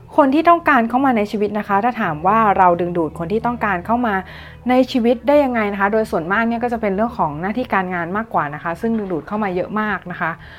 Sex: female